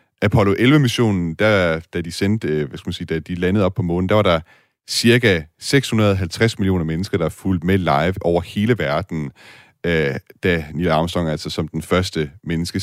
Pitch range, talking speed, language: 85-105 Hz, 180 wpm, Danish